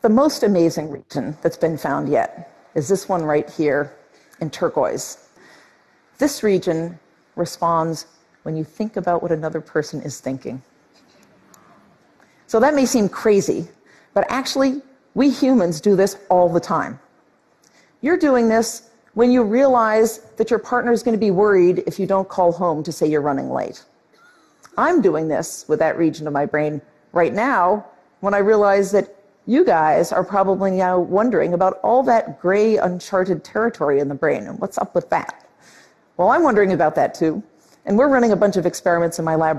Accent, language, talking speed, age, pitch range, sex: American, English, 175 wpm, 50-69, 165-220 Hz, female